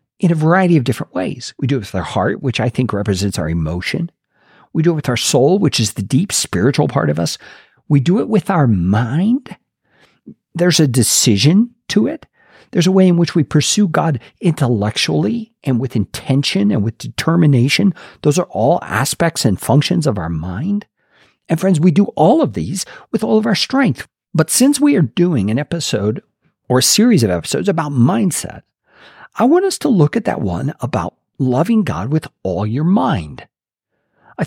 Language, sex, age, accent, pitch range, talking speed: English, male, 50-69, American, 135-205 Hz, 190 wpm